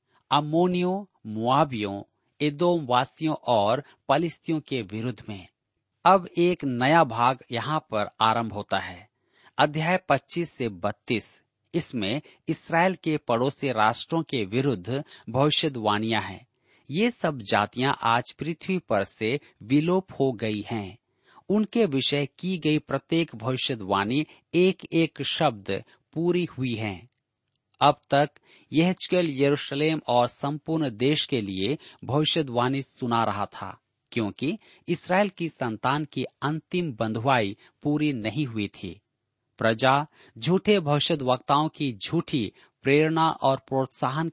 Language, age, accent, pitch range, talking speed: Hindi, 50-69, native, 115-160 Hz, 115 wpm